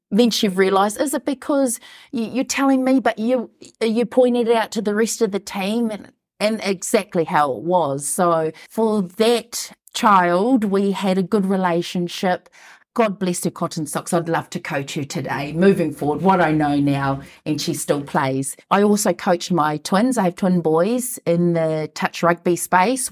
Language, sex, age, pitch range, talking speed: English, female, 40-59, 165-225 Hz, 185 wpm